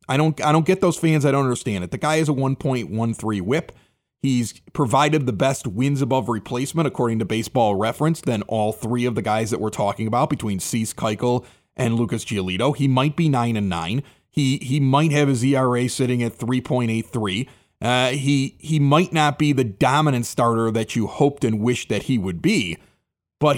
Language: English